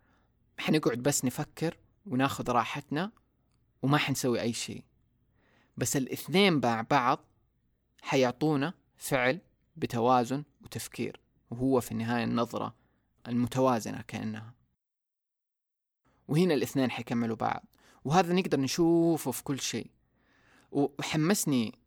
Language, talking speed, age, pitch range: Arabic, 95 wpm, 20-39, 115-135 Hz